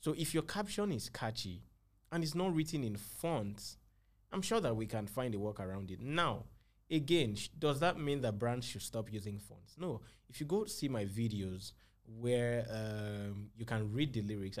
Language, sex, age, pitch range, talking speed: English, male, 20-39, 100-125 Hz, 195 wpm